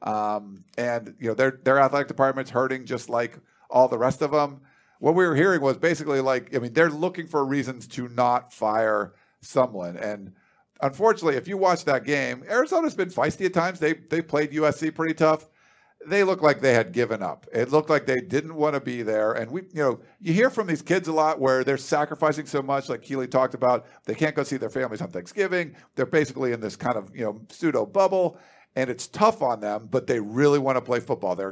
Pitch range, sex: 125-155 Hz, male